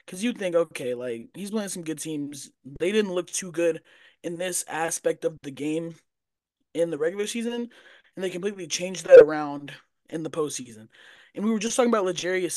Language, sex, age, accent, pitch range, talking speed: English, male, 20-39, American, 150-185 Hz, 195 wpm